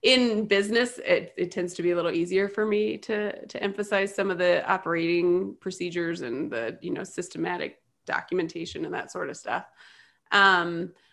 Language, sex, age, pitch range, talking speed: English, female, 20-39, 175-215 Hz, 175 wpm